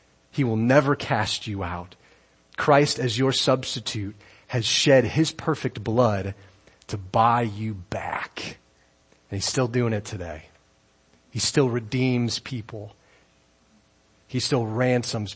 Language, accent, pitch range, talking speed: English, American, 100-125 Hz, 125 wpm